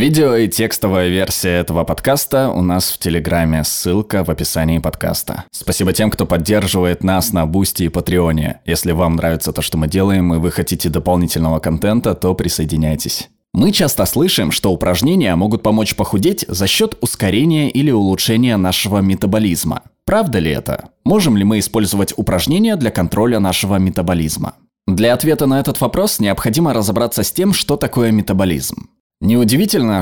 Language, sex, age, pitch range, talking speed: Russian, male, 20-39, 90-120 Hz, 155 wpm